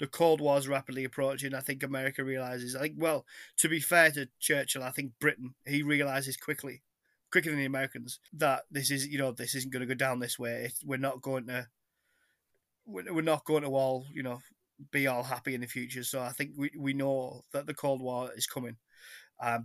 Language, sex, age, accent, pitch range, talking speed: English, male, 20-39, British, 125-150 Hz, 215 wpm